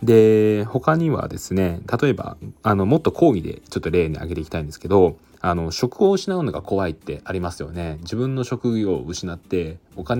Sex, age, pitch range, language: male, 20-39, 80-125 Hz, Japanese